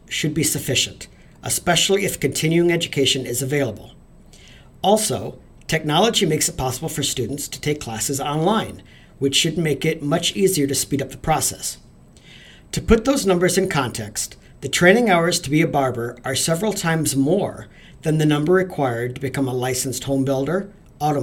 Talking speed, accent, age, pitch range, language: 165 wpm, American, 50-69, 135-175 Hz, English